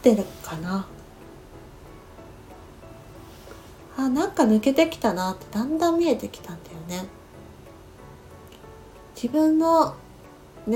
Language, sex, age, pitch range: Japanese, female, 40-59, 185-260 Hz